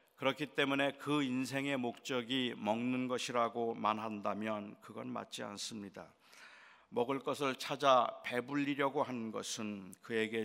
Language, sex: Korean, male